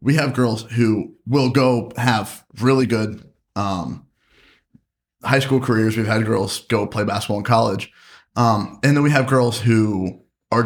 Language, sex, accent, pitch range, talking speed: English, male, American, 105-120 Hz, 165 wpm